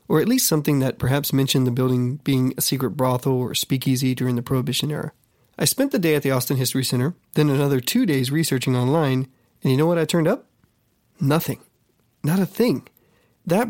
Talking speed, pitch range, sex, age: 200 wpm, 130-160 Hz, male, 30-49